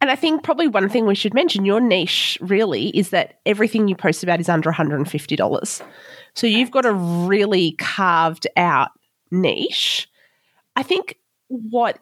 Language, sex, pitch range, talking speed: English, female, 170-230 Hz, 160 wpm